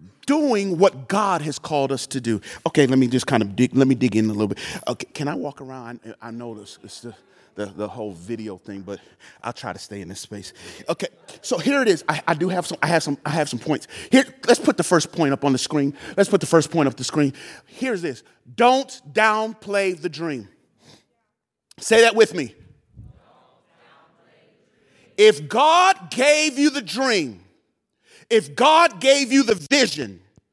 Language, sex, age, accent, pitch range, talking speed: English, male, 40-59, American, 130-220 Hz, 200 wpm